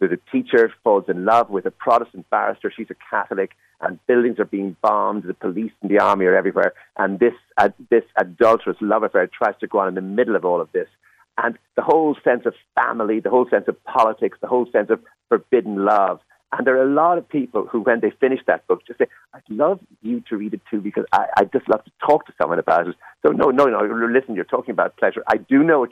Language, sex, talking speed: English, male, 245 wpm